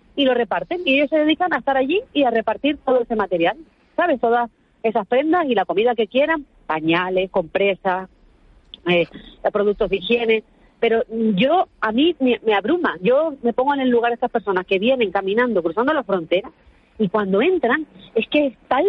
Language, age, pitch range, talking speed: Spanish, 40-59, 215-300 Hz, 185 wpm